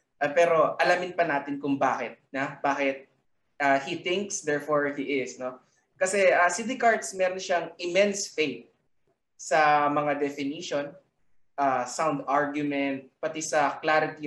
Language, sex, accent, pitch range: Filipino, male, native, 145-195 Hz